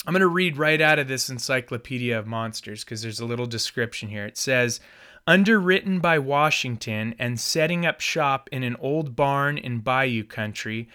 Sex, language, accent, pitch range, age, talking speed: male, English, American, 120-160 Hz, 30-49, 180 wpm